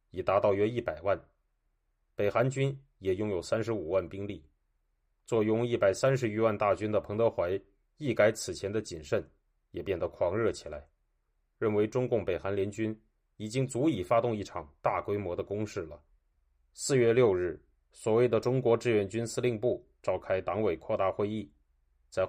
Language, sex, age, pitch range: Chinese, male, 30-49, 75-115 Hz